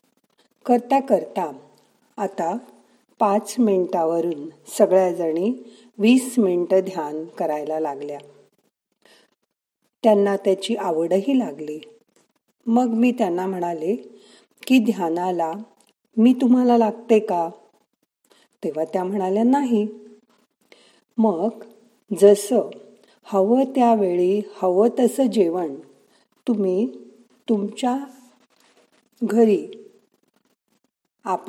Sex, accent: female, native